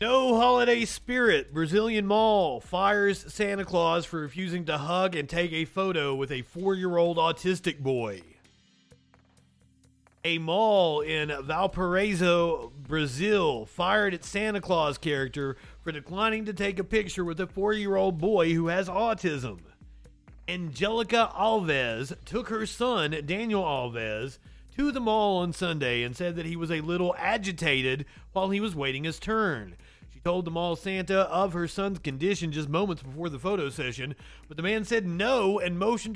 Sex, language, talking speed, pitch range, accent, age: male, English, 150 wpm, 150-200 Hz, American, 40-59